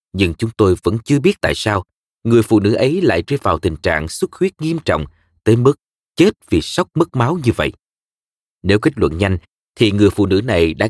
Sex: male